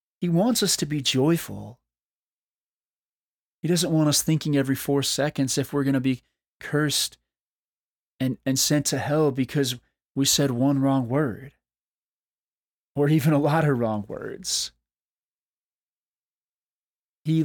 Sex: male